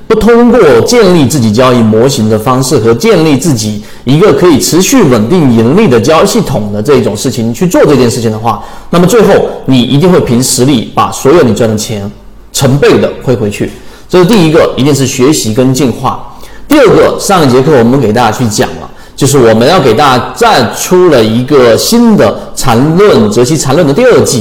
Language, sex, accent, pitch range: Chinese, male, native, 115-160 Hz